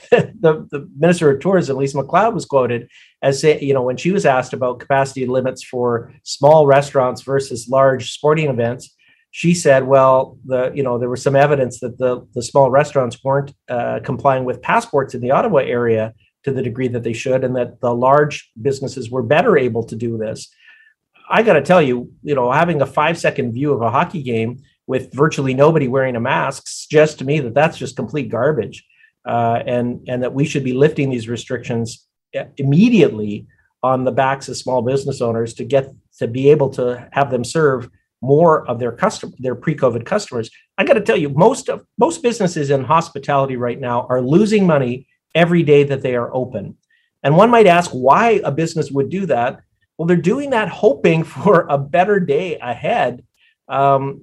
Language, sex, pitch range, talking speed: English, male, 125-155 Hz, 195 wpm